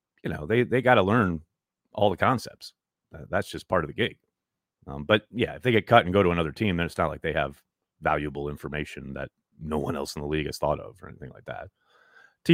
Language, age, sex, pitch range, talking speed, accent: English, 30-49, male, 85-135 Hz, 240 wpm, American